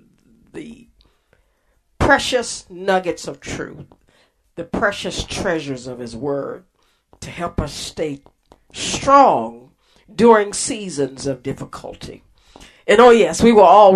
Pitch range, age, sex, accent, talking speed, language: 150-215 Hz, 50-69, female, American, 110 wpm, English